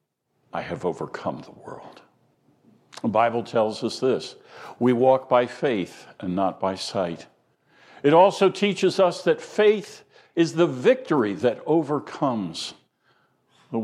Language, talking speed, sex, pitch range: English, 130 wpm, male, 110-150 Hz